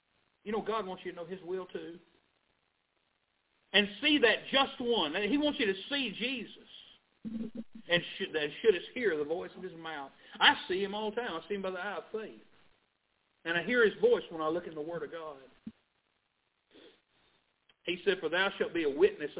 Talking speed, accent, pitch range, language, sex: 205 wpm, American, 180-275 Hz, English, male